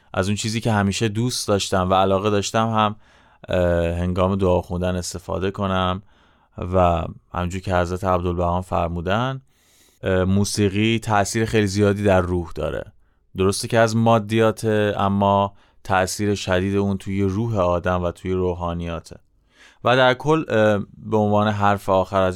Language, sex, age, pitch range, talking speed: Persian, male, 30-49, 95-120 Hz, 135 wpm